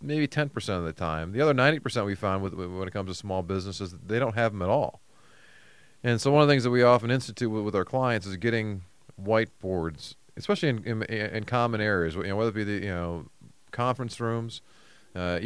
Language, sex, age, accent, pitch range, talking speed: English, male, 30-49, American, 95-120 Hz, 235 wpm